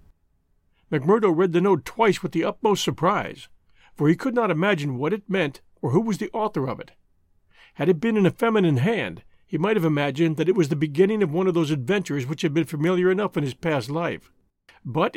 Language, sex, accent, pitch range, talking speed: English, male, American, 145-195 Hz, 220 wpm